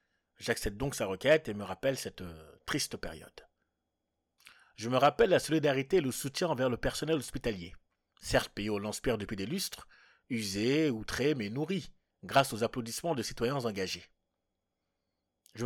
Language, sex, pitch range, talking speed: French, male, 105-135 Hz, 155 wpm